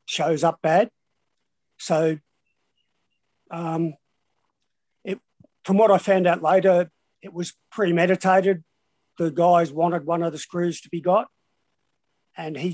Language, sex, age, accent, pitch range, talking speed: English, male, 50-69, Australian, 160-175 Hz, 125 wpm